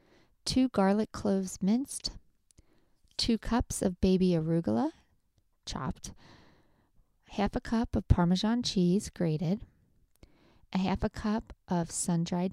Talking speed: 110 wpm